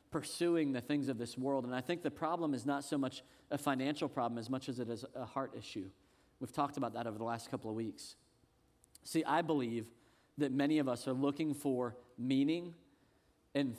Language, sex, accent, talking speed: English, male, American, 210 wpm